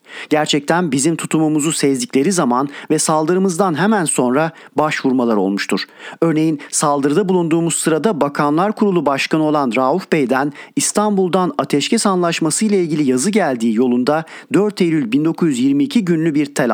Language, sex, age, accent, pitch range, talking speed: Turkish, male, 40-59, native, 145-180 Hz, 125 wpm